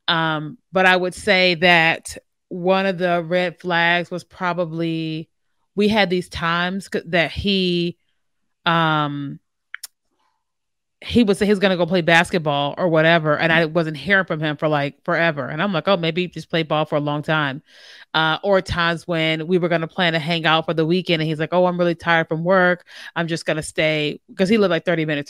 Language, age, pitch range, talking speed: English, 30-49, 160-185 Hz, 215 wpm